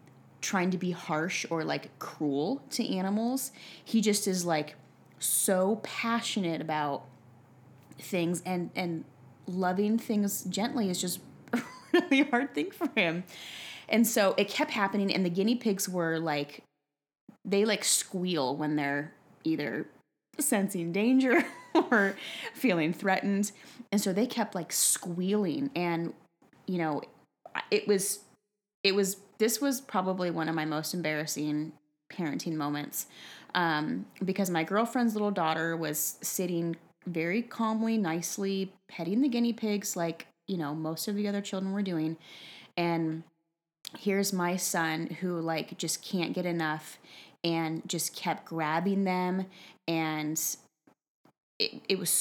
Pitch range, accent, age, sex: 165-205 Hz, American, 20-39, female